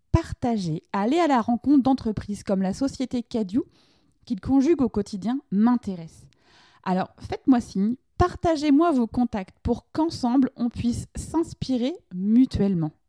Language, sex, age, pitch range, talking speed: French, female, 20-39, 185-250 Hz, 125 wpm